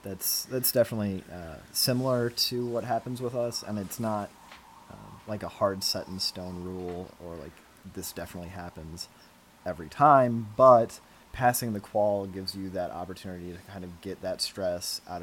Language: English